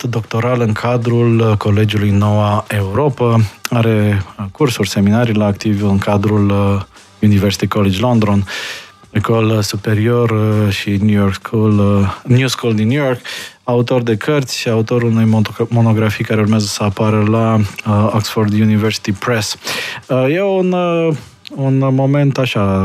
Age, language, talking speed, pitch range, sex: 20-39, Romanian, 145 wpm, 100-115 Hz, male